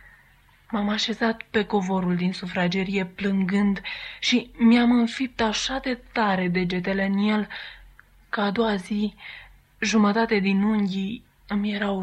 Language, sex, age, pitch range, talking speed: Romanian, female, 20-39, 190-220 Hz, 125 wpm